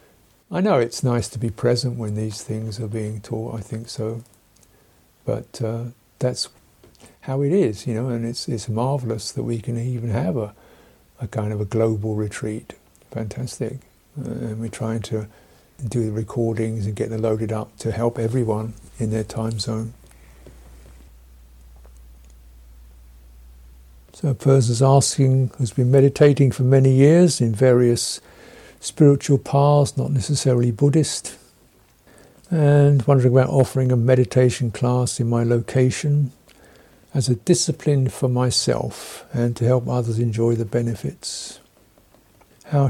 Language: English